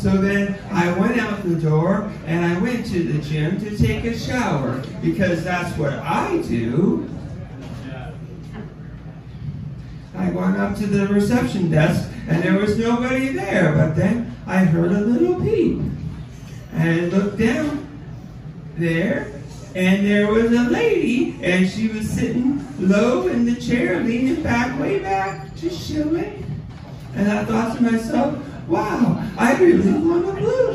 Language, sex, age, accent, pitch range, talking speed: English, male, 40-59, American, 155-220 Hz, 145 wpm